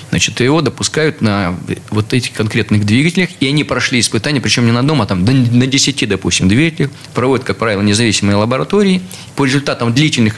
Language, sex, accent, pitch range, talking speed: Russian, male, native, 105-140 Hz, 175 wpm